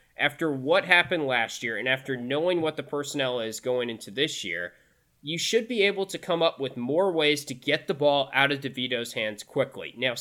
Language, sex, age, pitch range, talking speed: English, male, 20-39, 130-170 Hz, 210 wpm